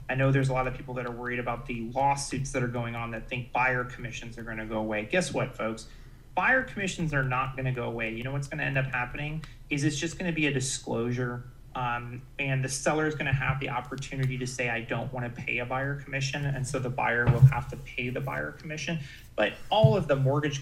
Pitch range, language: 120-140 Hz, English